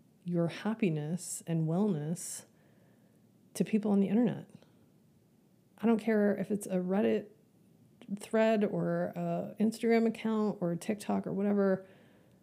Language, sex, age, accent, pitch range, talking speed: English, female, 30-49, American, 160-205 Hz, 125 wpm